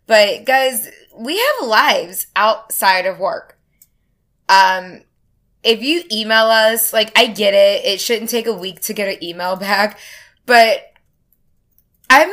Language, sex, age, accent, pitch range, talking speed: English, female, 20-39, American, 185-230 Hz, 140 wpm